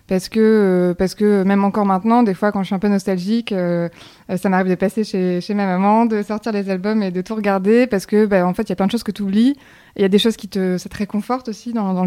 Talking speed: 295 wpm